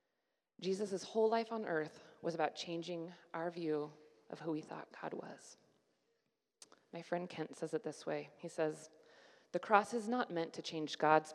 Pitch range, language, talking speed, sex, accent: 145-175 Hz, English, 175 wpm, female, American